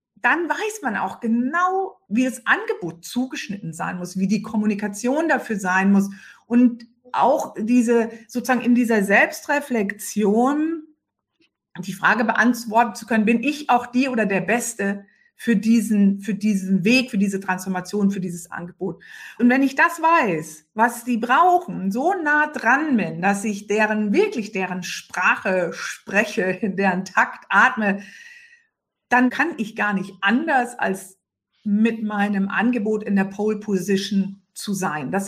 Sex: female